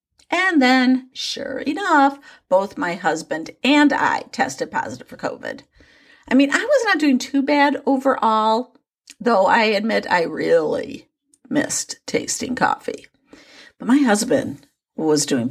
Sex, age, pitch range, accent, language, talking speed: female, 50-69, 200-295 Hz, American, English, 135 wpm